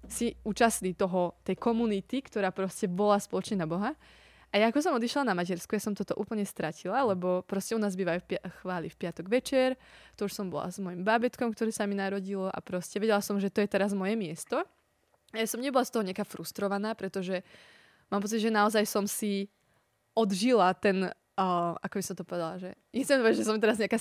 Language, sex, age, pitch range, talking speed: Slovak, female, 20-39, 185-215 Hz, 205 wpm